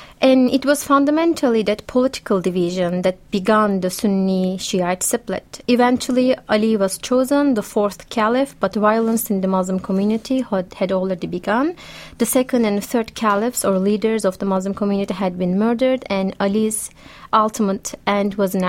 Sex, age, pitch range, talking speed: female, 30-49, 195-235 Hz, 155 wpm